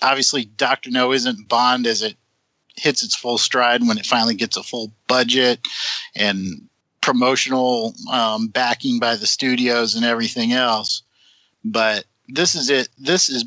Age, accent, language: 50-69, American, English